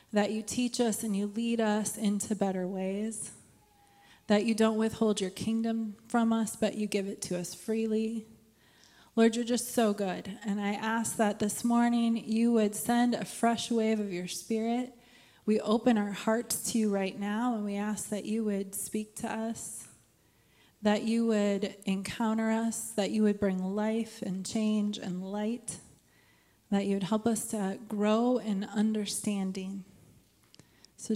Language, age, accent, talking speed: English, 30-49, American, 170 wpm